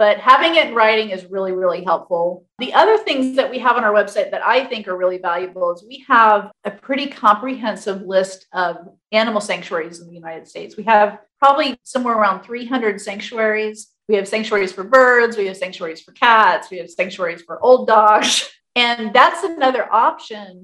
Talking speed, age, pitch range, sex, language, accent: 190 wpm, 40-59, 185-225 Hz, female, English, American